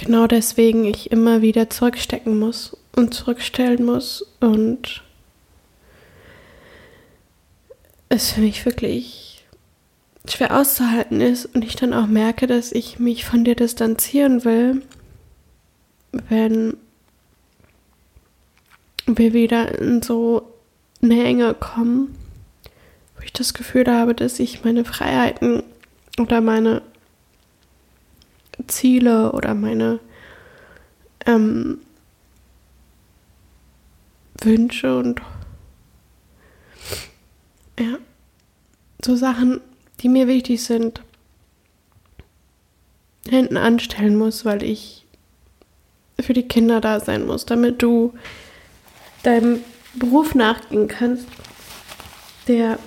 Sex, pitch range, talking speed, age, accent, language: female, 215-245 Hz, 90 wpm, 20-39, German, German